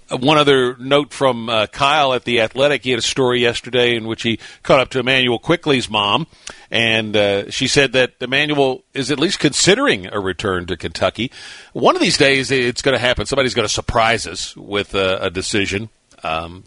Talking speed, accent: 200 wpm, American